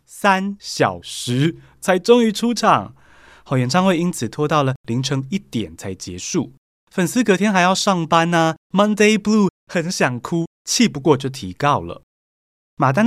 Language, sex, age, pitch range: Chinese, male, 20-39, 110-180 Hz